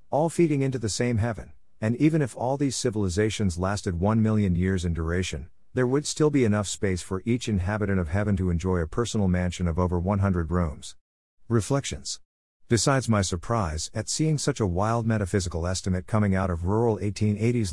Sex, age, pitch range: male, 50-69, 90-115 Hz